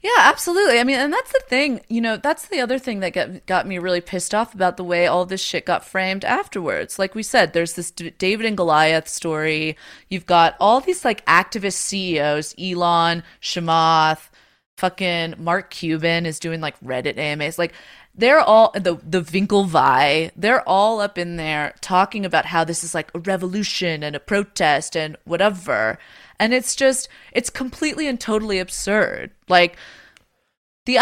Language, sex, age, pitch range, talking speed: English, female, 20-39, 165-210 Hz, 175 wpm